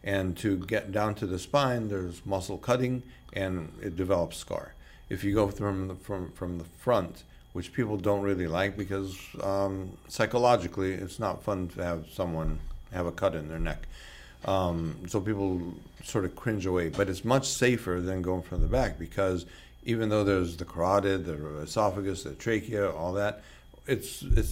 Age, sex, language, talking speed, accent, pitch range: 50-69, male, English, 175 wpm, American, 85-105 Hz